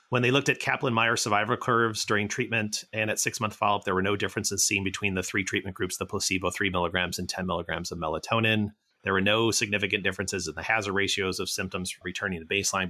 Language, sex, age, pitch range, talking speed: English, male, 30-49, 95-115 Hz, 215 wpm